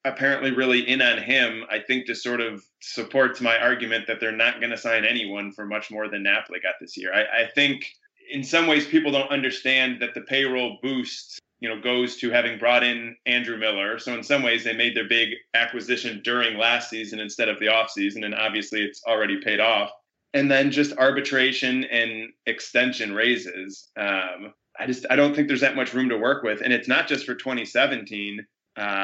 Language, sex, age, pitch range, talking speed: English, male, 20-39, 110-130 Hz, 205 wpm